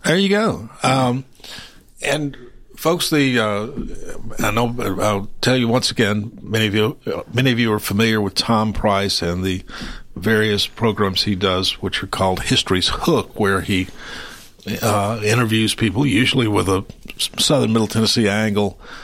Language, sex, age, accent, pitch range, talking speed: English, male, 60-79, American, 95-115 Hz, 155 wpm